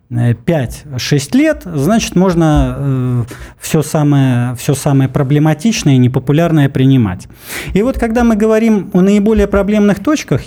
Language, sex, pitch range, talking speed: Russian, male, 130-175 Hz, 115 wpm